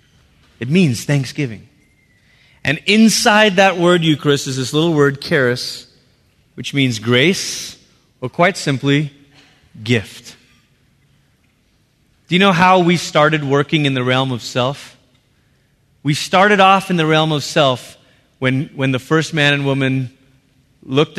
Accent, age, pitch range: American, 30-49, 125-185 Hz